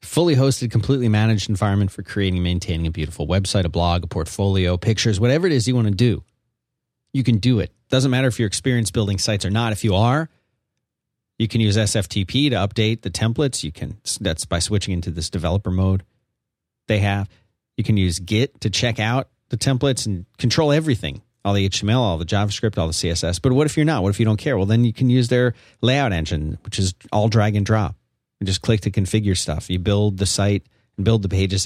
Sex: male